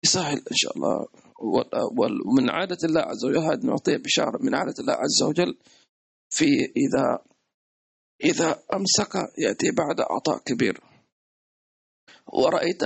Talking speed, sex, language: 125 wpm, male, English